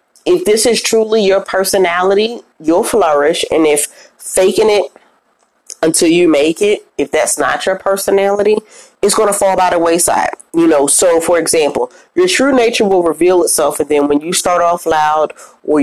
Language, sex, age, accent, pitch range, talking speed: English, female, 30-49, American, 175-270 Hz, 180 wpm